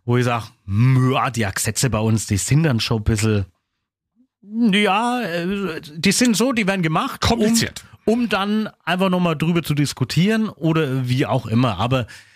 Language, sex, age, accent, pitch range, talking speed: German, male, 30-49, German, 110-150 Hz, 165 wpm